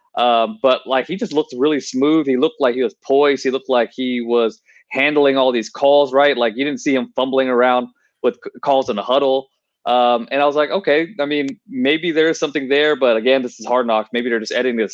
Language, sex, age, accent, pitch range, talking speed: English, male, 20-39, American, 120-145 Hz, 245 wpm